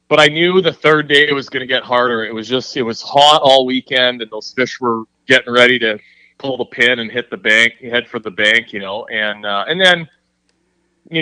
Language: English